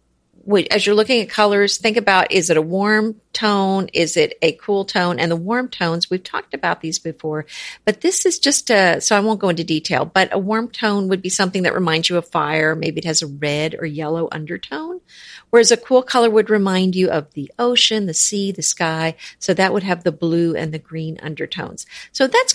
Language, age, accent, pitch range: English, 50-69, American, 175-240 Hz